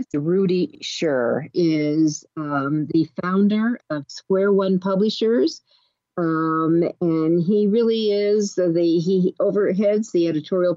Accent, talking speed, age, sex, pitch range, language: American, 110 wpm, 50-69, female, 155-200 Hz, English